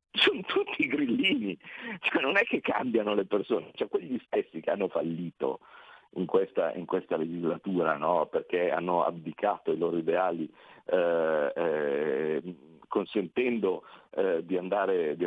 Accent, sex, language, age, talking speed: native, male, Italian, 50-69, 135 wpm